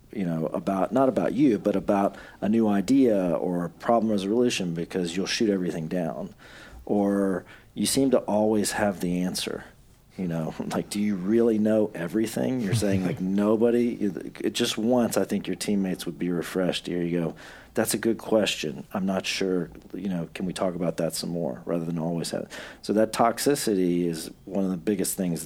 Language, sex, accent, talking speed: English, male, American, 190 wpm